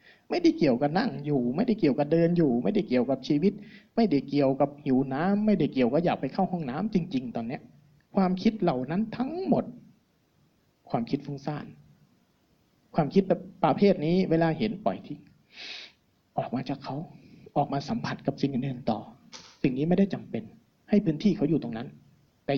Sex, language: male, Thai